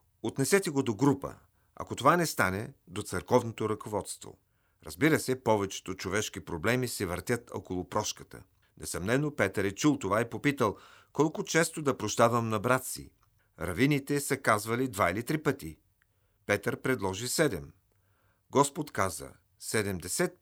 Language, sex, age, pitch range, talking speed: Bulgarian, male, 40-59, 95-130 Hz, 140 wpm